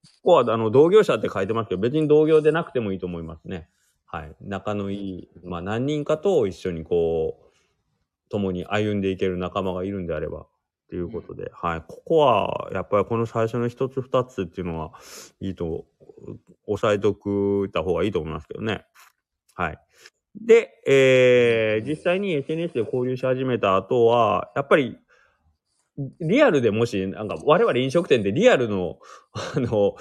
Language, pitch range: Japanese, 95-155 Hz